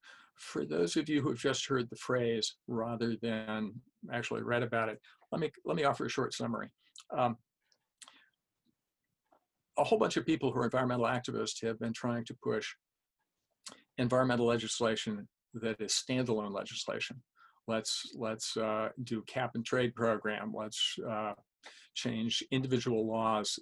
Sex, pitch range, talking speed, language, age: male, 110-130 Hz, 145 wpm, English, 50-69